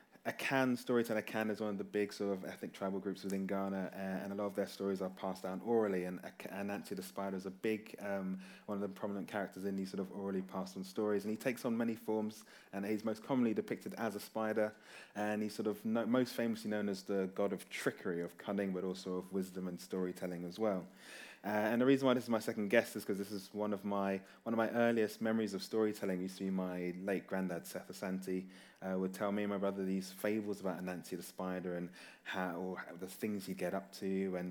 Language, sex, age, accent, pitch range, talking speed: English, male, 20-39, British, 95-105 Hz, 240 wpm